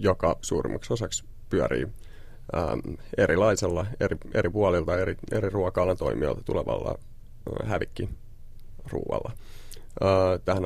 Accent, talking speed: native, 90 wpm